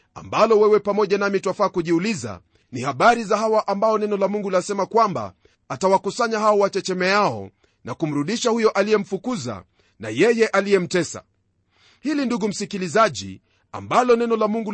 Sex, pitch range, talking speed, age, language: male, 175-225 Hz, 140 wpm, 40-59, Swahili